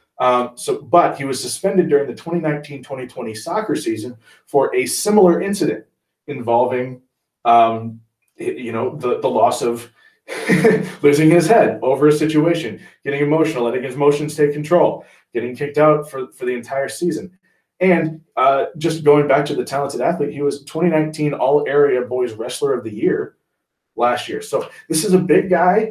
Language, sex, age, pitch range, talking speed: English, male, 30-49, 125-175 Hz, 165 wpm